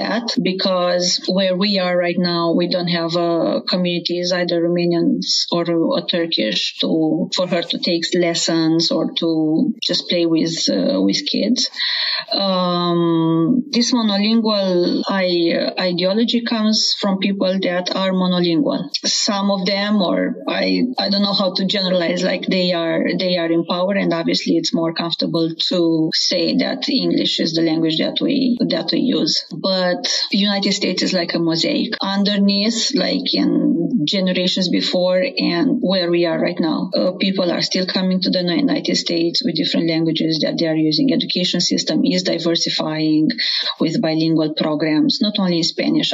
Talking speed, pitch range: 165 wpm, 170-205 Hz